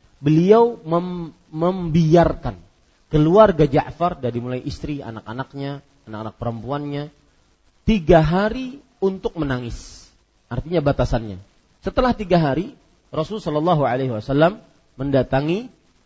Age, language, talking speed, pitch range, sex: 40-59, Malay, 85 wpm, 120-170 Hz, male